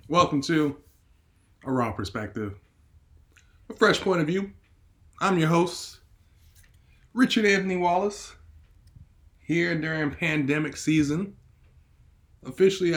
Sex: male